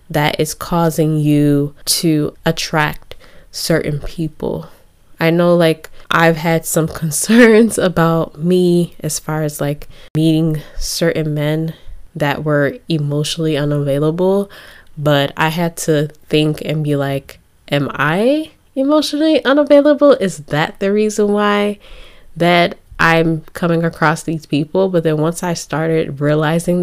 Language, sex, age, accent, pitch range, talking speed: English, female, 10-29, American, 150-175 Hz, 125 wpm